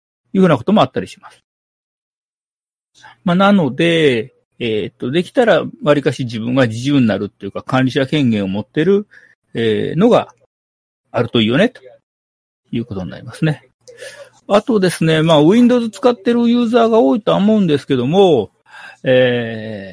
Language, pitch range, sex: Japanese, 115-190 Hz, male